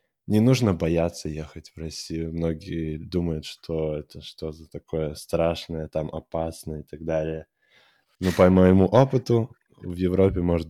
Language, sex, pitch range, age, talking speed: Russian, male, 80-90 Hz, 20-39, 145 wpm